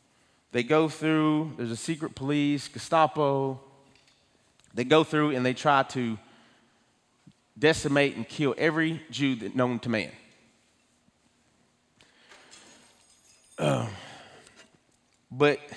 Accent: American